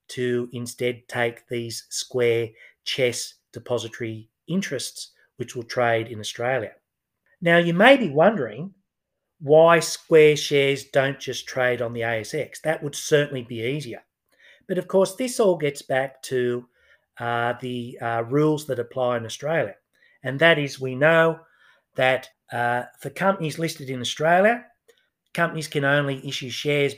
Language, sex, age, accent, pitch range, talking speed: English, male, 40-59, Australian, 125-160 Hz, 145 wpm